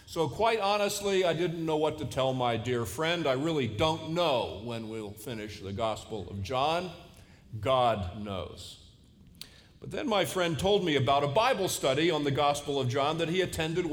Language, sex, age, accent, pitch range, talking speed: English, male, 50-69, American, 135-185 Hz, 185 wpm